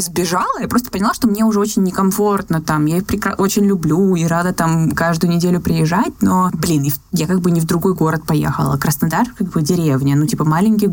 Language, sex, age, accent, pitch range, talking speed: Russian, female, 20-39, native, 160-195 Hz, 205 wpm